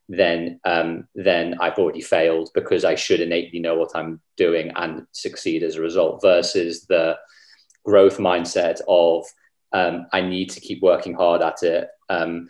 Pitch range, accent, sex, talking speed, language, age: 85-95 Hz, British, male, 165 wpm, English, 30-49